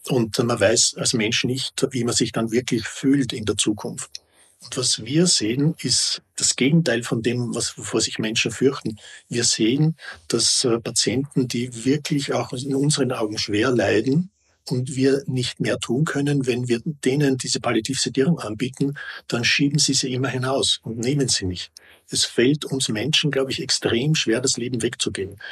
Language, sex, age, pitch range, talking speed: German, male, 50-69, 105-135 Hz, 175 wpm